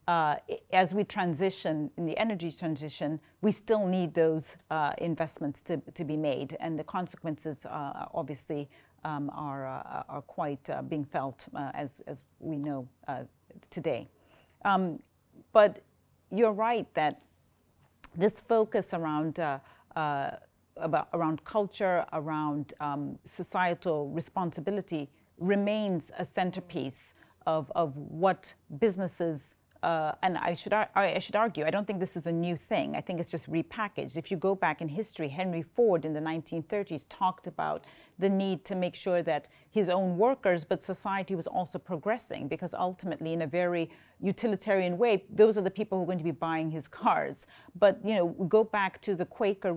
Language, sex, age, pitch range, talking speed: English, female, 40-59, 160-195 Hz, 165 wpm